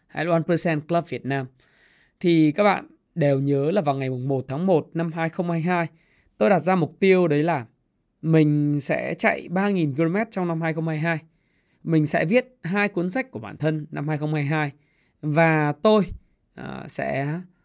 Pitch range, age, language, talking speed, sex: 145-175 Hz, 20-39, Vietnamese, 160 wpm, male